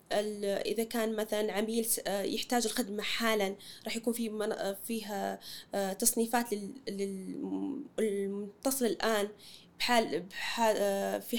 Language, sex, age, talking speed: Arabic, female, 20-39, 85 wpm